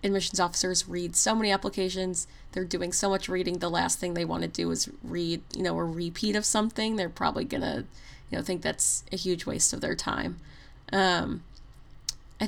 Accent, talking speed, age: American, 195 wpm, 20-39